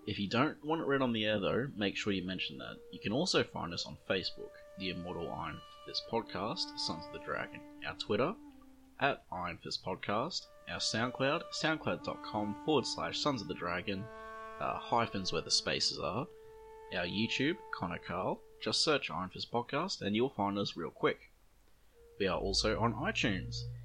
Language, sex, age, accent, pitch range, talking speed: English, male, 20-39, Australian, 100-160 Hz, 180 wpm